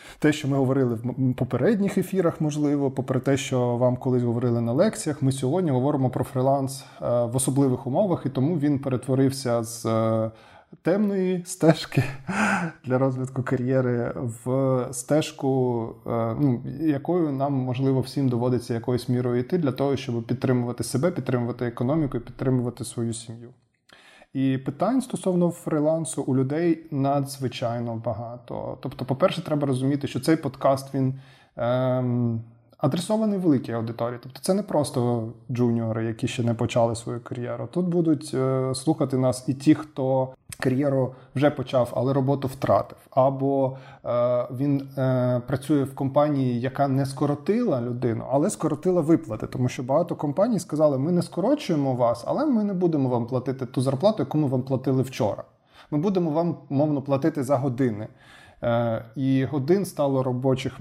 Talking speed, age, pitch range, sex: 145 wpm, 20-39, 125-150 Hz, male